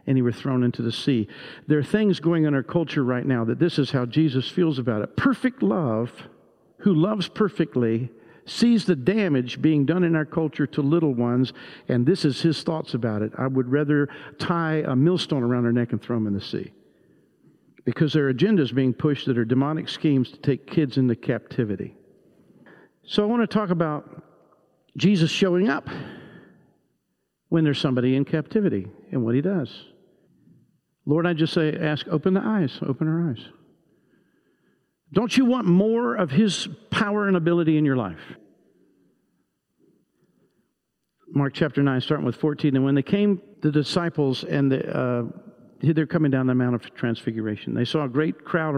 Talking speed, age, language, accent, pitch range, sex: 180 wpm, 50-69, English, American, 130-175 Hz, male